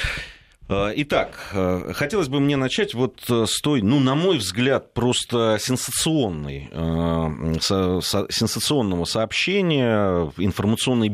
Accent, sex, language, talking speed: native, male, Russian, 85 wpm